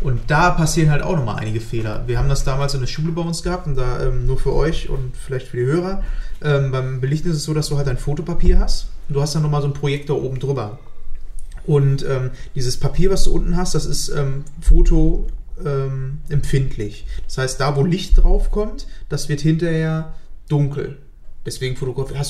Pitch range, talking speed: 130-160 Hz, 205 wpm